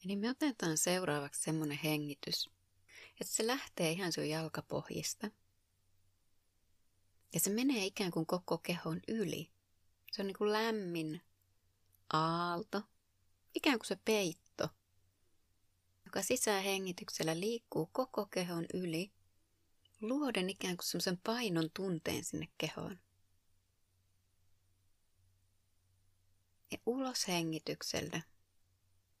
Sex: female